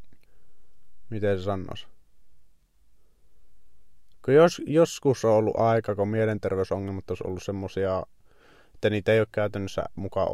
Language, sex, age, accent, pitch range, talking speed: Finnish, male, 20-39, native, 95-110 Hz, 110 wpm